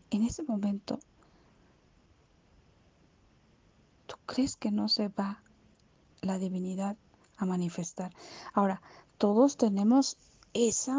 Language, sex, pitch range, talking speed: Spanish, female, 190-235 Hz, 95 wpm